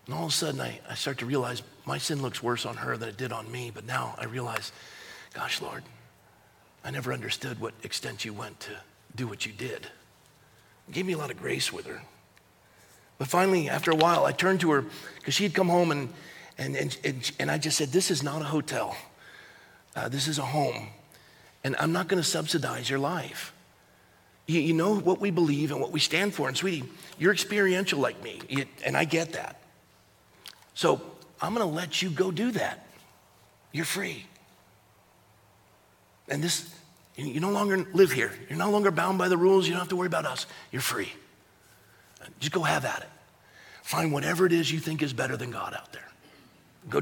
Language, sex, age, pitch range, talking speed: English, male, 40-59, 135-185 Hz, 200 wpm